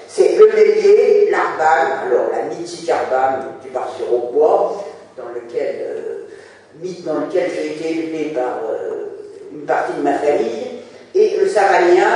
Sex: female